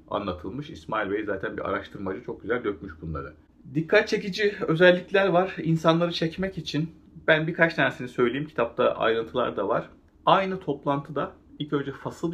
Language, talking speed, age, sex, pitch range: Turkish, 145 wpm, 40-59, male, 110-165 Hz